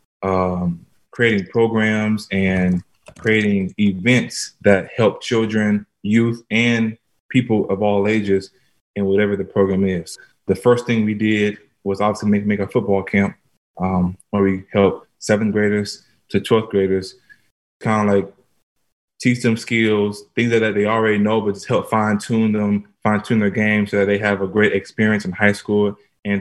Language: English